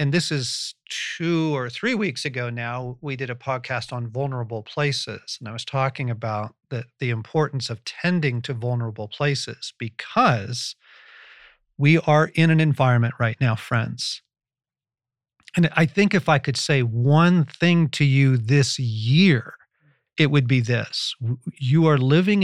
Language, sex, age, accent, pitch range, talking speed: English, male, 40-59, American, 125-155 Hz, 155 wpm